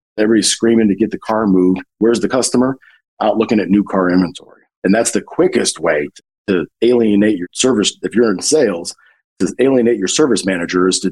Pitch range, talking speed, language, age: 95-115 Hz, 195 wpm, English, 40-59